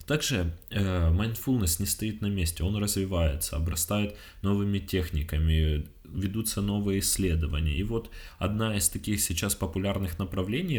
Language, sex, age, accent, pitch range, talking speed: Russian, male, 20-39, native, 85-115 Hz, 120 wpm